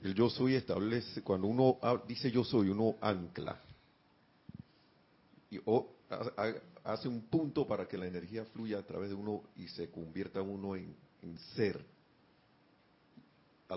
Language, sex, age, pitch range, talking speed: Spanish, male, 40-59, 100-130 Hz, 140 wpm